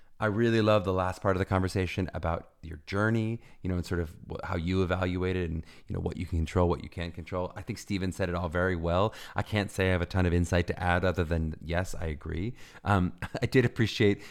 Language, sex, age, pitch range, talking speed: English, male, 30-49, 85-110 Hz, 250 wpm